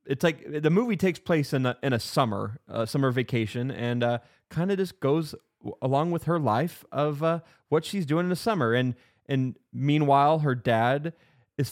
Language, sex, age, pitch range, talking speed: English, male, 20-39, 115-140 Hz, 195 wpm